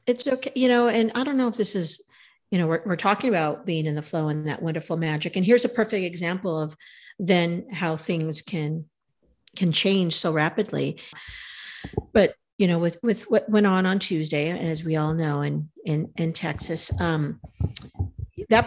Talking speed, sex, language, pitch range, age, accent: 195 wpm, female, English, 155-200 Hz, 50-69, American